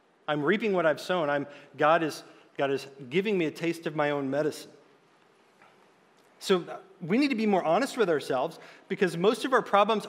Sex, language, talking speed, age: male, English, 190 wpm, 40-59